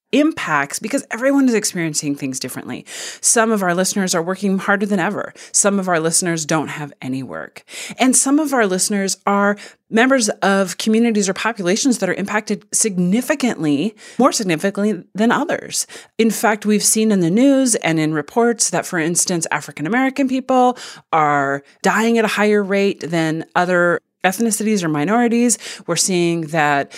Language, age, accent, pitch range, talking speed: English, 30-49, American, 160-230 Hz, 160 wpm